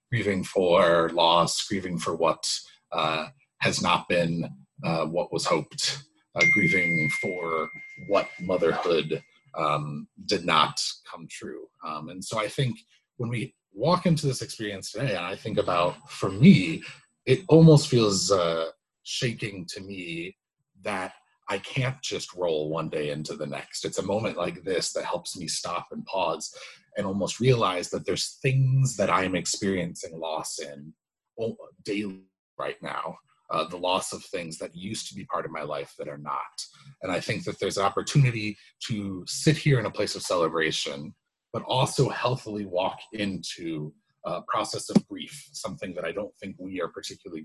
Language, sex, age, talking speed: English, male, 30-49, 170 wpm